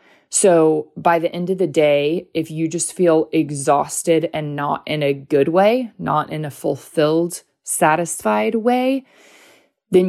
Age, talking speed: 20-39, 150 wpm